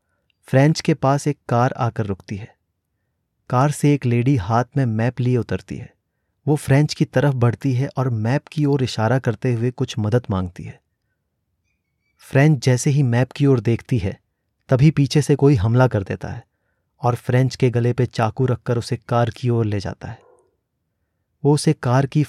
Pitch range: 110-135 Hz